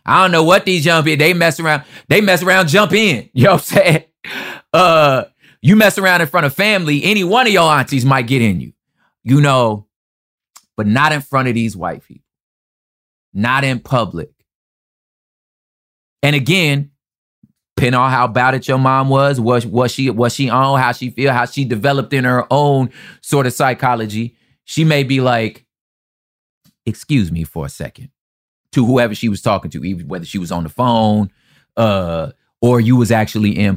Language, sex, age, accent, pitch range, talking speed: English, male, 20-39, American, 95-140 Hz, 185 wpm